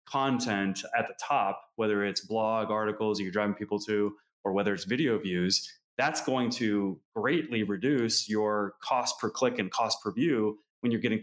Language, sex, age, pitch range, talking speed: English, male, 20-39, 100-130 Hz, 175 wpm